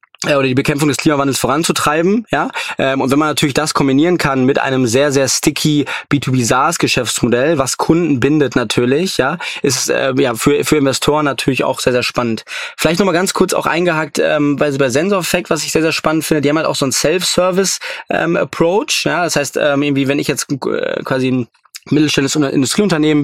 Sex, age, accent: male, 20-39, German